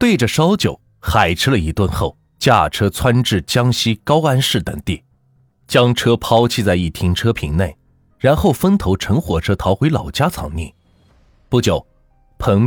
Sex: male